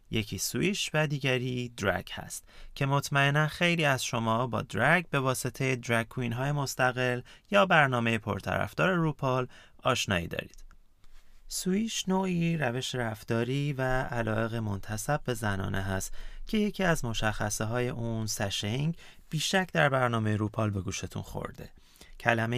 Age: 30-49